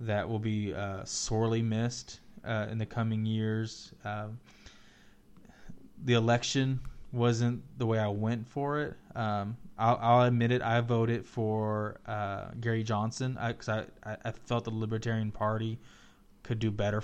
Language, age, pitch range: English, 20-39, 105-120 Hz